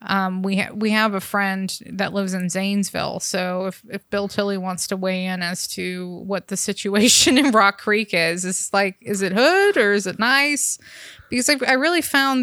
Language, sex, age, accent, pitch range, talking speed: English, female, 20-39, American, 190-225 Hz, 210 wpm